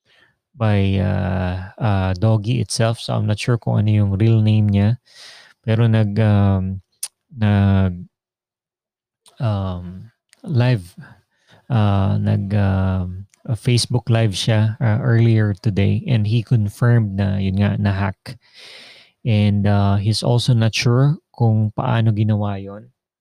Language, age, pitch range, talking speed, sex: Filipino, 20-39, 100-120 Hz, 125 wpm, male